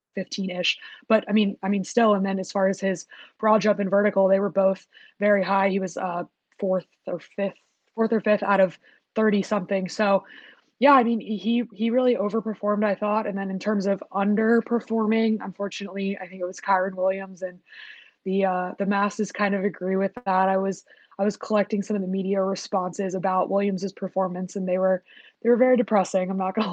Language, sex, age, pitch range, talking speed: English, female, 20-39, 190-215 Hz, 200 wpm